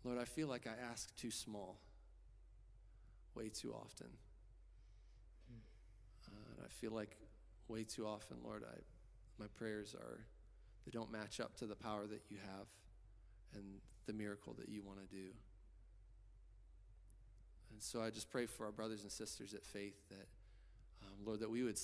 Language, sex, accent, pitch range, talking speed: English, male, American, 95-110 Hz, 160 wpm